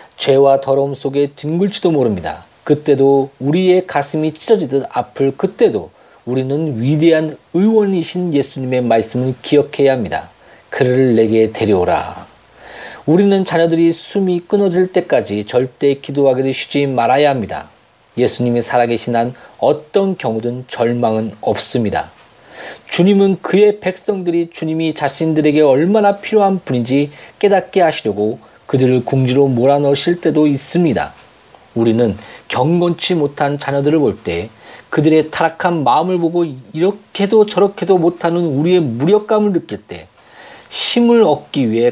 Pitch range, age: 130-175 Hz, 40-59